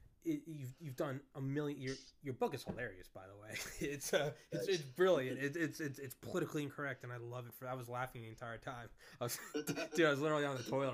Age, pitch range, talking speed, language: 20-39, 120-155 Hz, 245 wpm, English